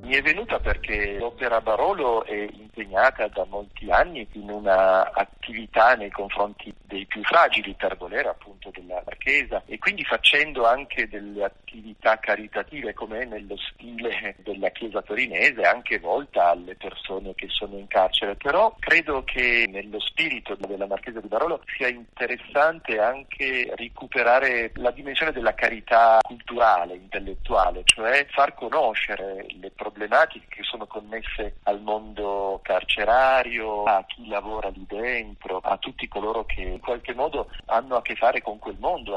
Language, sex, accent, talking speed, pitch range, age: Italian, male, native, 145 wpm, 100-120 Hz, 40-59